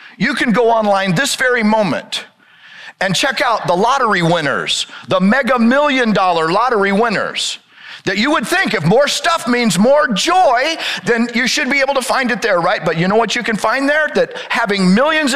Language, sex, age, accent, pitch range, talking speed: English, male, 50-69, American, 210-290 Hz, 195 wpm